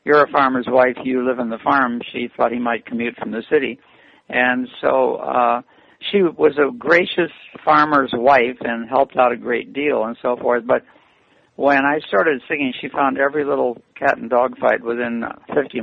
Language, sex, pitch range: English, male, 120-145 Hz